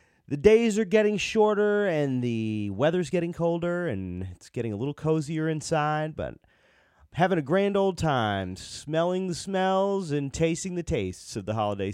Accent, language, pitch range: American, English, 120-170 Hz